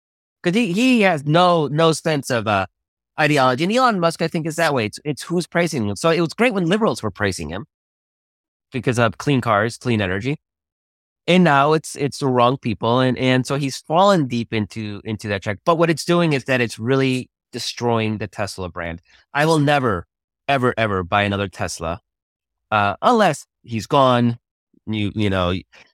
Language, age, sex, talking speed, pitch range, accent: English, 30-49, male, 190 wpm, 105-150 Hz, American